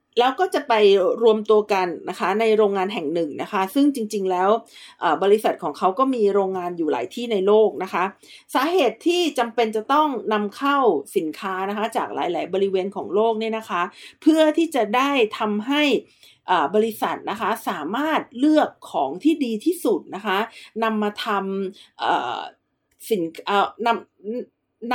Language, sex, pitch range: Thai, female, 200-280 Hz